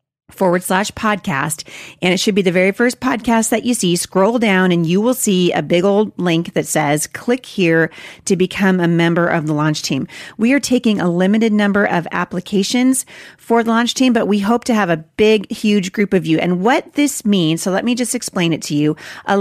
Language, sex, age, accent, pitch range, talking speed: English, female, 40-59, American, 170-215 Hz, 225 wpm